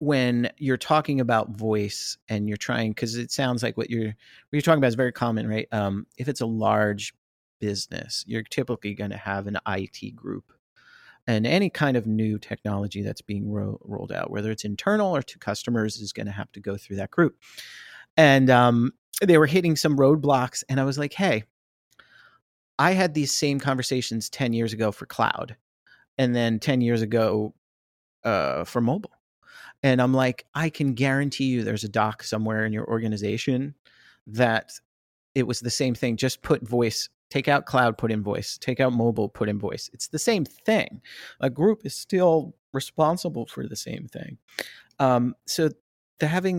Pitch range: 110-140 Hz